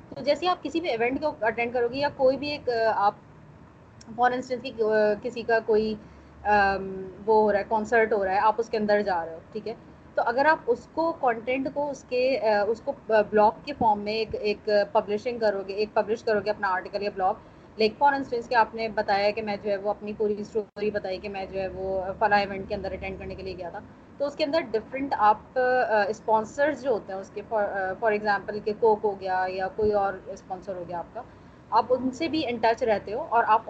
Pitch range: 205-255 Hz